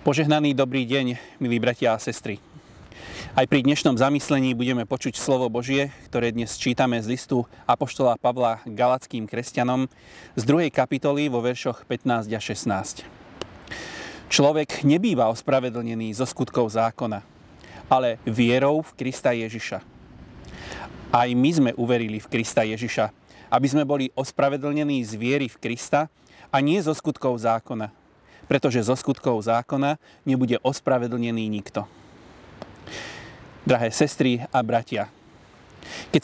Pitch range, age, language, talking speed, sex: 115-140 Hz, 30-49, Slovak, 125 wpm, male